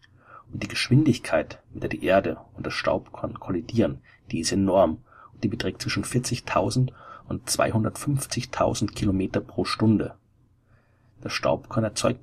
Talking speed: 130 wpm